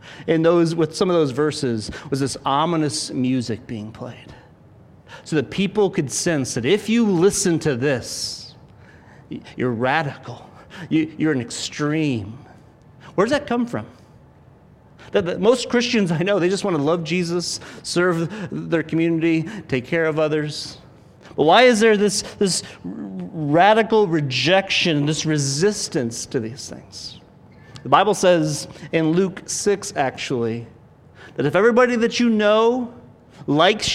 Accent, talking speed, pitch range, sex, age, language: American, 140 wpm, 150-205 Hz, male, 40-59, English